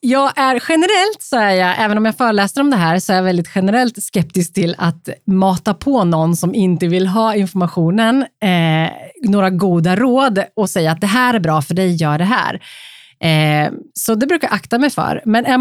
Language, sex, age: Swedish, female, 30-49